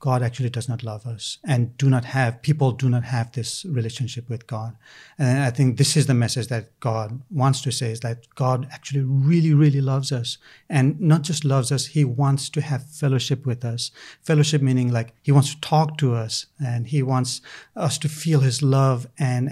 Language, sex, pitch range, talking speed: English, male, 125-150 Hz, 210 wpm